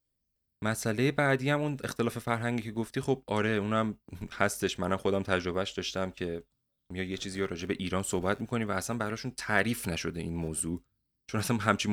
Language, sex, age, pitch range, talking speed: Persian, male, 20-39, 95-120 Hz, 180 wpm